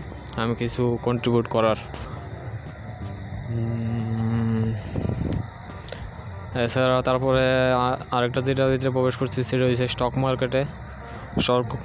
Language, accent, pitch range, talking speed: Bengali, native, 115-130 Hz, 80 wpm